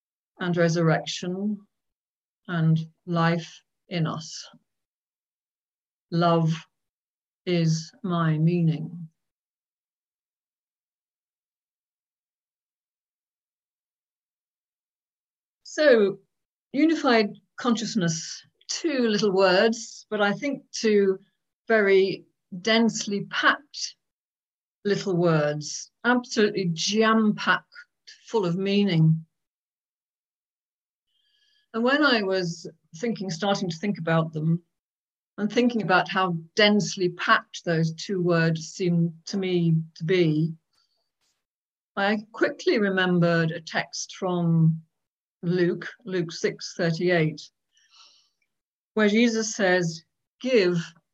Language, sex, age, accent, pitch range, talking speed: English, female, 50-69, British, 165-215 Hz, 80 wpm